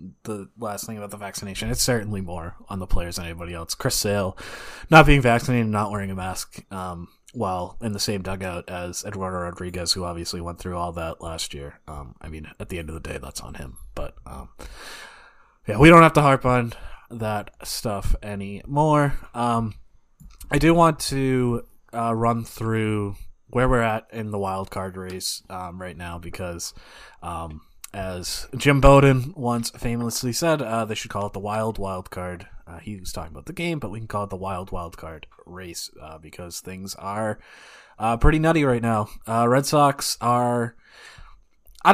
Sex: male